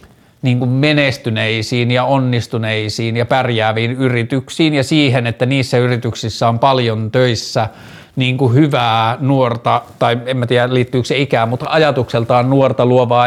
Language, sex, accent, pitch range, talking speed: Finnish, male, native, 120-140 Hz, 140 wpm